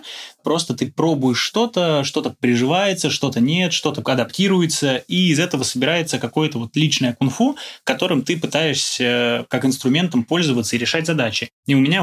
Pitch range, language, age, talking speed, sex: 125-160 Hz, Russian, 20-39, 145 wpm, male